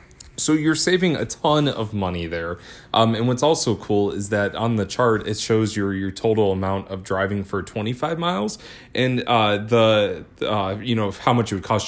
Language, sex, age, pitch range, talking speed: English, male, 20-39, 100-120 Hz, 200 wpm